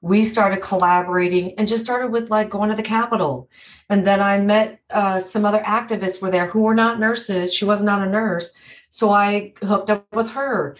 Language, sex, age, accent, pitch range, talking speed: English, female, 40-59, American, 200-225 Hz, 205 wpm